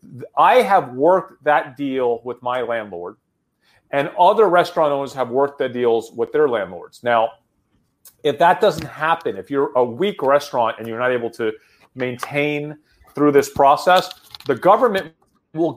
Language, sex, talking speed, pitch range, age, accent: English, male, 155 wpm, 125-170 Hz, 40-59, American